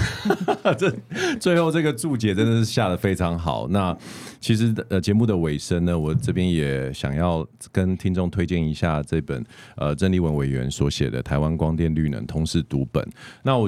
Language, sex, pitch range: Chinese, male, 80-105 Hz